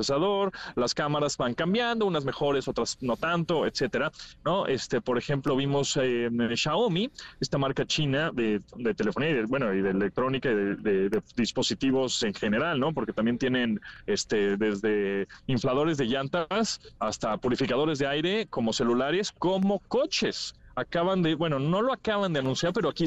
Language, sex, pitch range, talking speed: Spanish, male, 120-155 Hz, 165 wpm